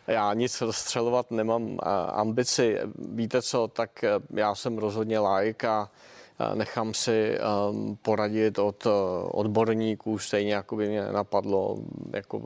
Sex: male